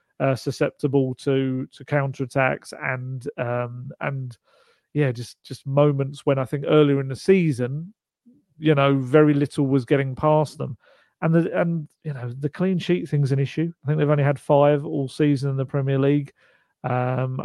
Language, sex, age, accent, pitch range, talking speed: English, male, 40-59, British, 135-155 Hz, 170 wpm